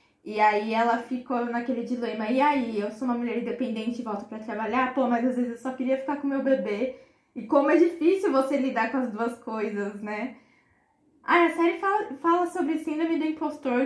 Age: 10-29